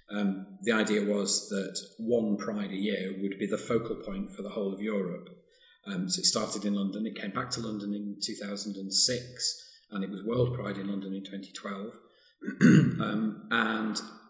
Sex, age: male, 40-59